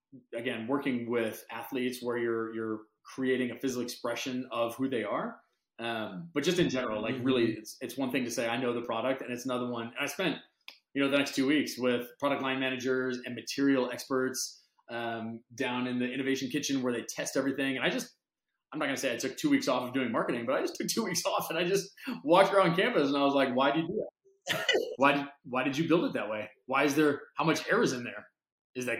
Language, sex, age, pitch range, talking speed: English, male, 30-49, 120-140 Hz, 245 wpm